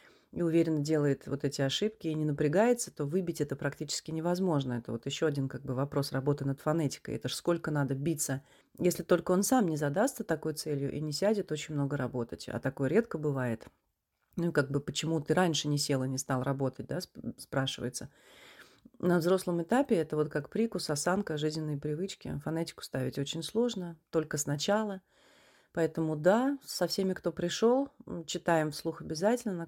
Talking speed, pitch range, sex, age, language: 175 wpm, 145-180 Hz, female, 30-49, Russian